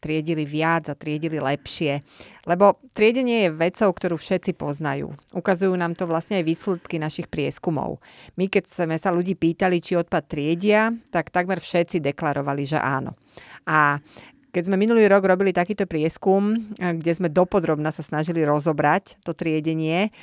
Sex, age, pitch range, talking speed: female, 30-49, 150-190 Hz, 150 wpm